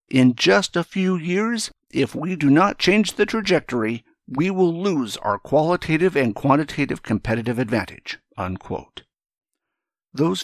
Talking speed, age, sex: 125 wpm, 60-79, male